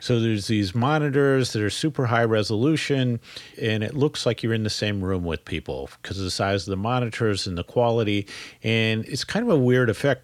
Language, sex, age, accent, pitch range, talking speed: English, male, 40-59, American, 100-125 Hz, 215 wpm